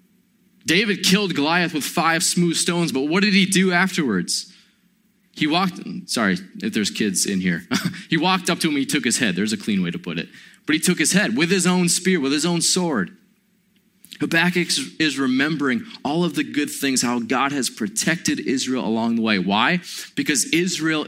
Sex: male